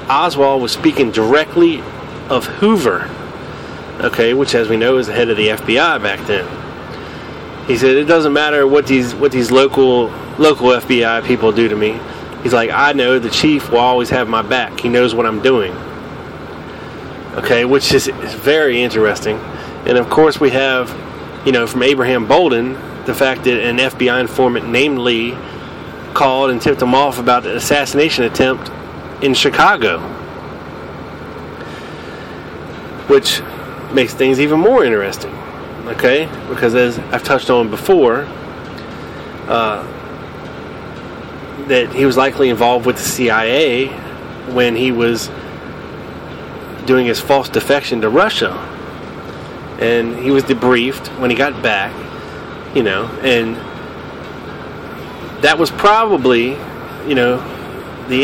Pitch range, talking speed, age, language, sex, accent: 120-135 Hz, 140 wpm, 30-49, English, male, American